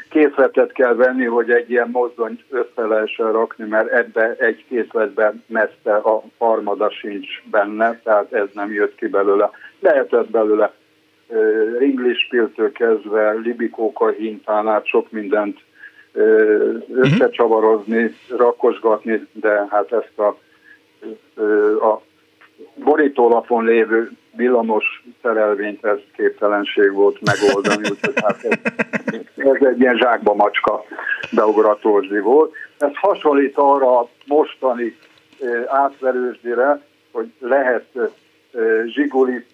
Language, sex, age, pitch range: Hungarian, male, 60-79, 110-150 Hz